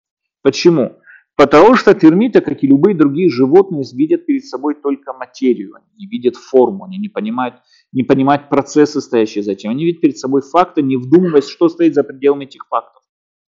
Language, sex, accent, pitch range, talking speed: Russian, male, native, 125-180 Hz, 175 wpm